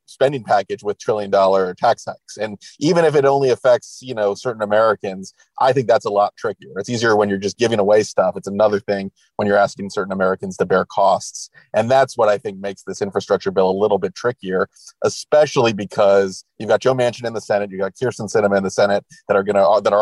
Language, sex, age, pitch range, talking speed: English, male, 30-49, 100-110 Hz, 230 wpm